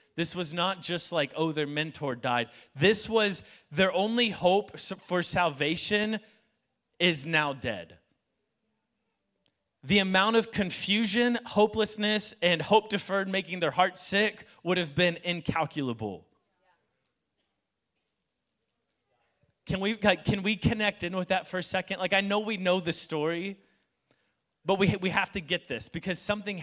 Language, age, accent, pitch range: English, 30-49, American, 160-210 Hz